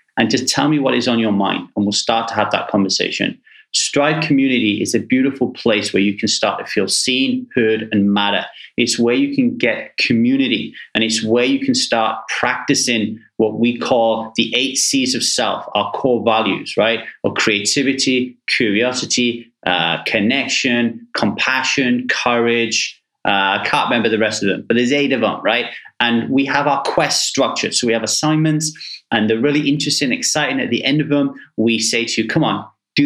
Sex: male